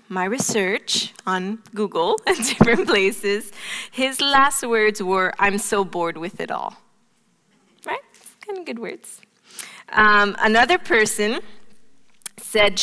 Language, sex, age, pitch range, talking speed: English, female, 20-39, 185-230 Hz, 120 wpm